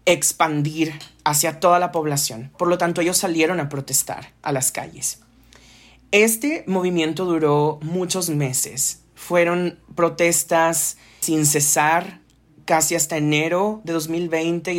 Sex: male